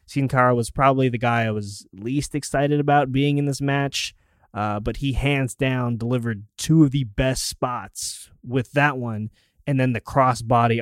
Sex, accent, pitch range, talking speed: male, American, 105-130 Hz, 185 wpm